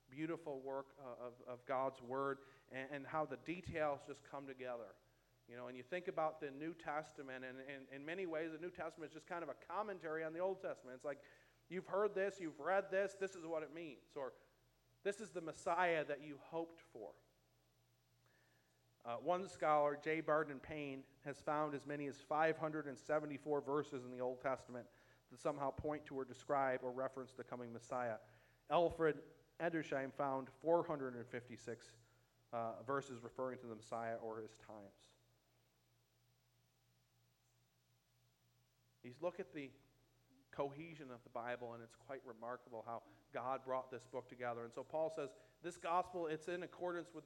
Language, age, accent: English, 40-59, American